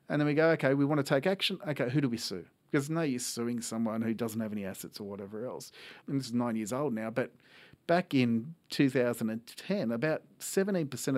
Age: 40-59